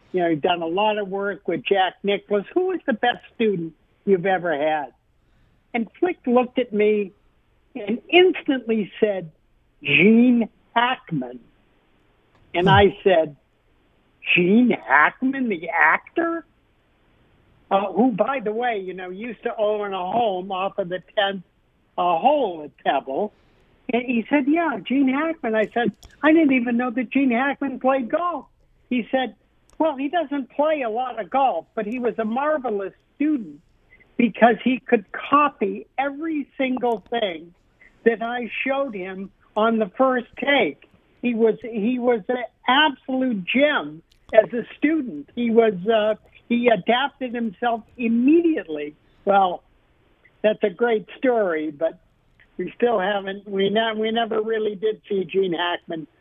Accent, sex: American, male